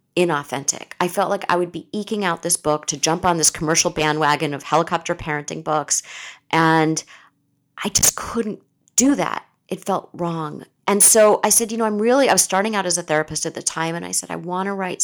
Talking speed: 220 wpm